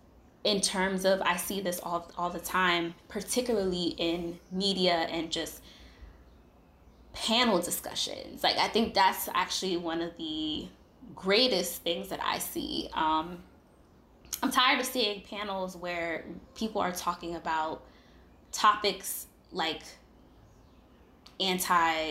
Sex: female